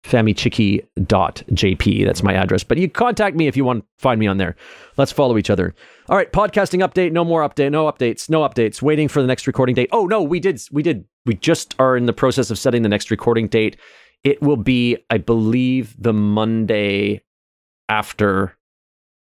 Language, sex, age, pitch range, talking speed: English, male, 30-49, 100-135 Hz, 195 wpm